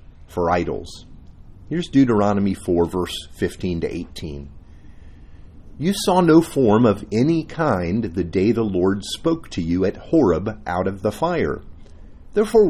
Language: English